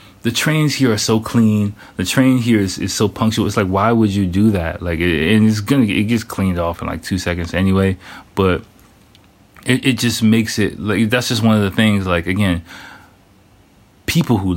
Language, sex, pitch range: English, male, 85-110 Hz